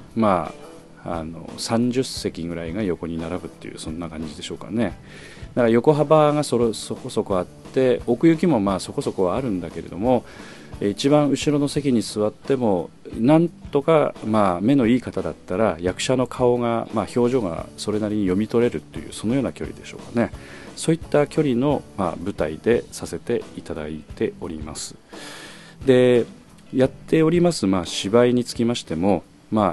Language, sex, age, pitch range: Japanese, male, 40-59, 90-130 Hz